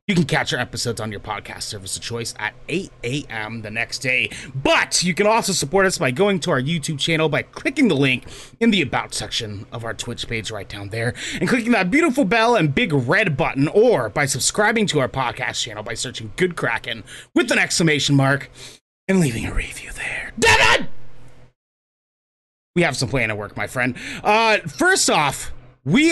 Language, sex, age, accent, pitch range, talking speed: English, male, 30-49, American, 125-185 Hz, 195 wpm